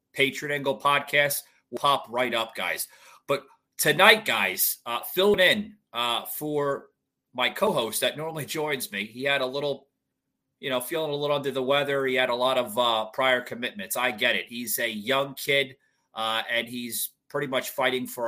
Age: 30-49